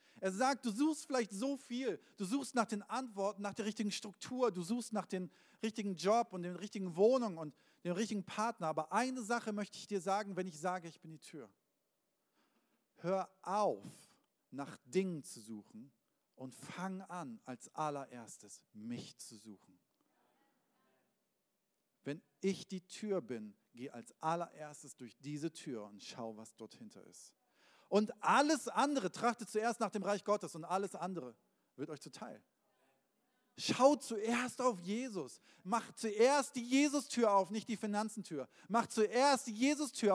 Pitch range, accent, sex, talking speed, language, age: 165-235 Hz, German, male, 160 wpm, German, 40-59